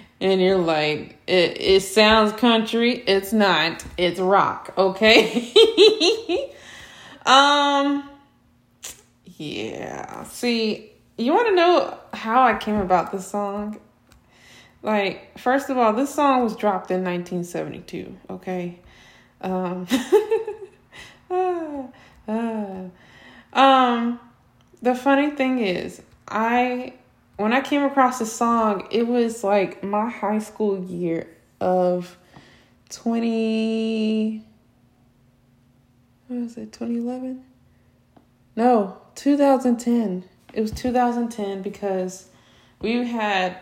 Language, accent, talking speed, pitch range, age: English, American, 100 wpm, 180-240 Hz, 20-39